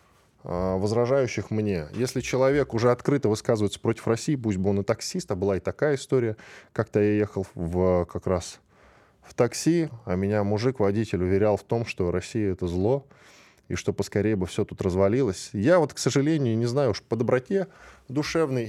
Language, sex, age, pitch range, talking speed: Russian, male, 10-29, 95-130 Hz, 170 wpm